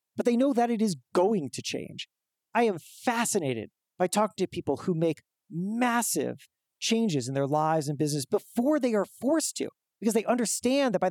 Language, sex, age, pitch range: English, male, 40-59, 160-230 Hz